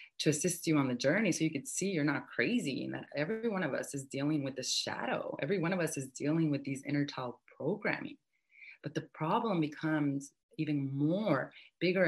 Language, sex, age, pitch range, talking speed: English, female, 30-49, 135-160 Hz, 210 wpm